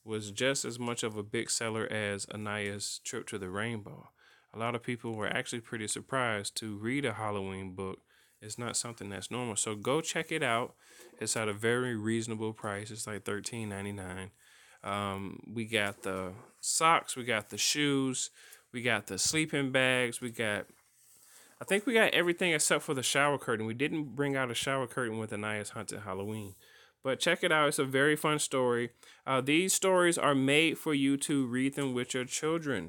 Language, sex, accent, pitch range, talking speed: English, male, American, 105-135 Hz, 190 wpm